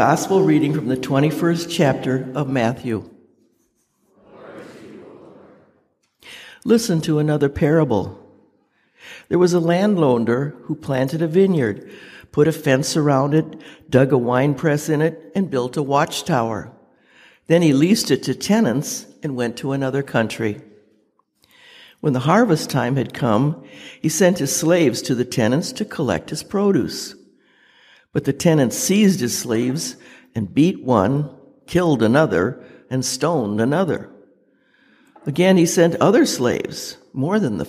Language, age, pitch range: English, 60-79, 130-170 Hz